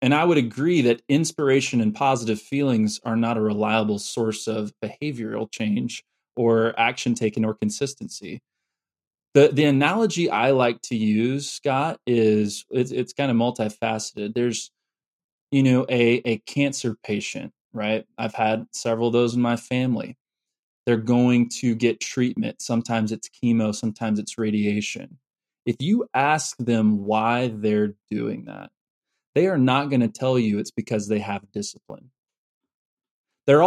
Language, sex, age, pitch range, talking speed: English, male, 20-39, 110-135 Hz, 150 wpm